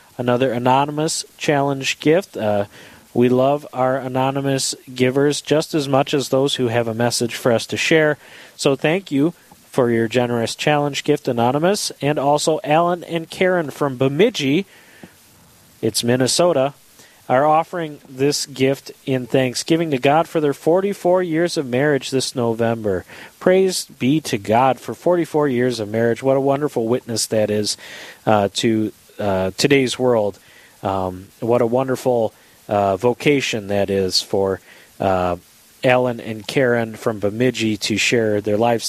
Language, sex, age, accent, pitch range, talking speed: English, male, 40-59, American, 115-150 Hz, 150 wpm